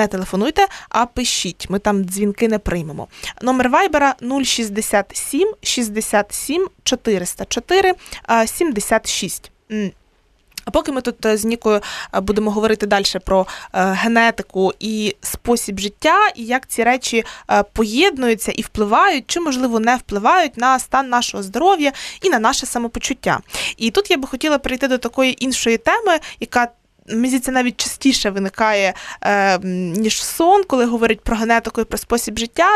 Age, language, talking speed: 20-39, Ukrainian, 130 wpm